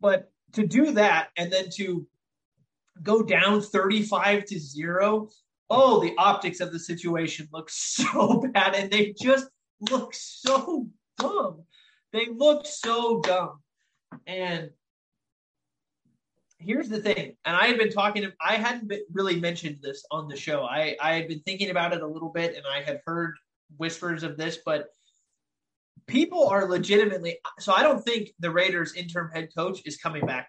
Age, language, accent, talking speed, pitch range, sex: 30-49, English, American, 160 wpm, 155-205 Hz, male